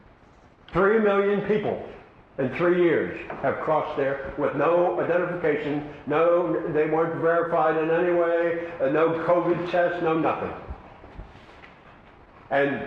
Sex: male